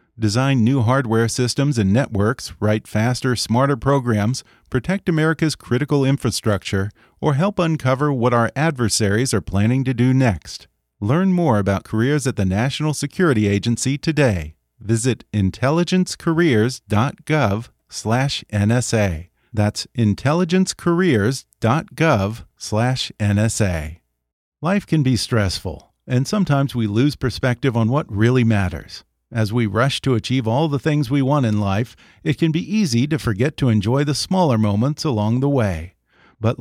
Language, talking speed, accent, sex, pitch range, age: English, 135 wpm, American, male, 105-140 Hz, 40-59